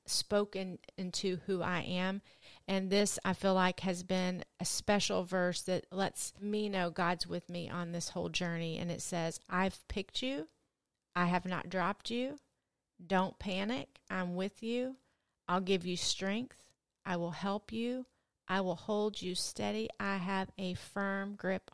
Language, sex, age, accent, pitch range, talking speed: English, female, 40-59, American, 180-205 Hz, 165 wpm